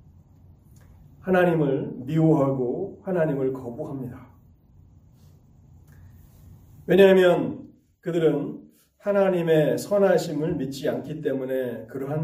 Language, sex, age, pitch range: Korean, male, 40-59, 130-175 Hz